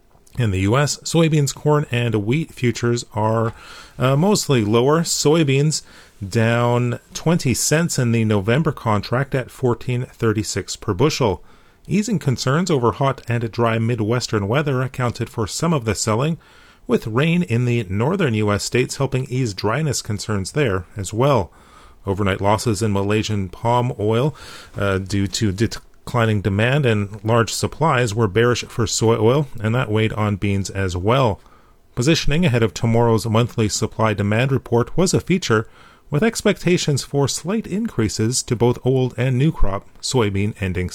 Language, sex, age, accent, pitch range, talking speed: English, male, 40-59, American, 105-140 Hz, 150 wpm